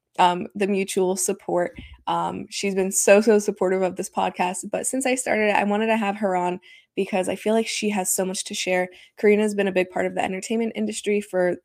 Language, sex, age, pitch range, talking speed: English, female, 20-39, 180-210 Hz, 225 wpm